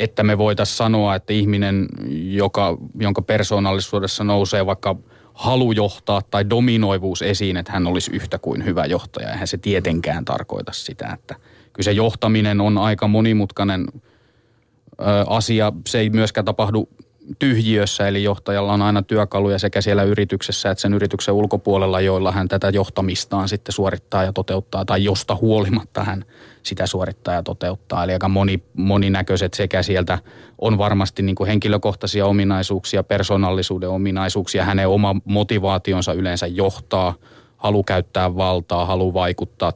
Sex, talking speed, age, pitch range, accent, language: male, 135 wpm, 20-39, 95-105 Hz, native, Finnish